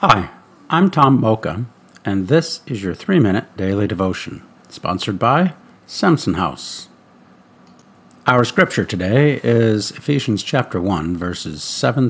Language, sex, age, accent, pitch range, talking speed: English, male, 50-69, American, 95-130 Hz, 120 wpm